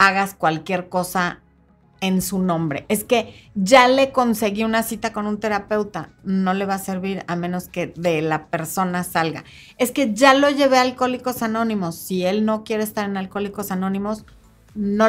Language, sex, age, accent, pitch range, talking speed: Spanish, female, 30-49, Mexican, 185-245 Hz, 180 wpm